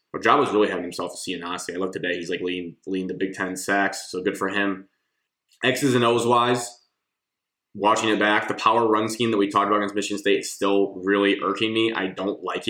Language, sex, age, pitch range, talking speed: English, male, 20-39, 100-110 Hz, 235 wpm